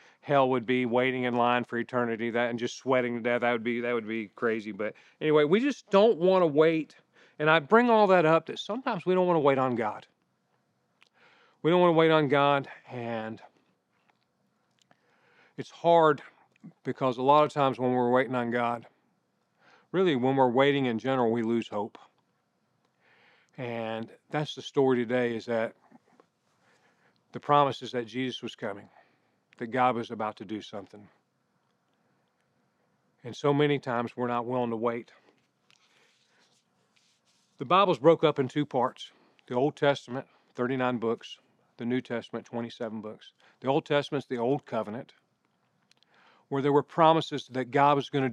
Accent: American